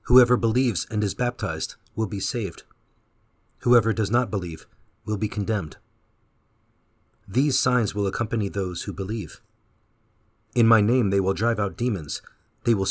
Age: 40-59